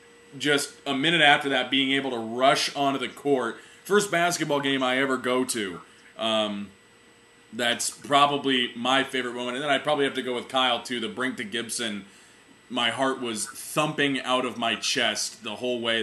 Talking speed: 185 wpm